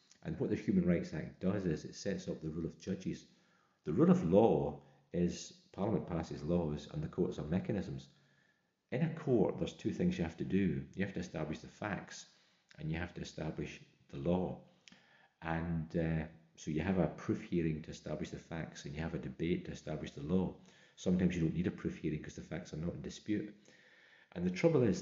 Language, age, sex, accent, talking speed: English, 40-59, male, British, 215 wpm